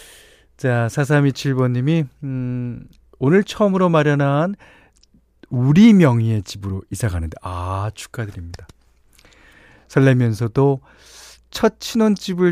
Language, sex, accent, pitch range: Korean, male, native, 105-150 Hz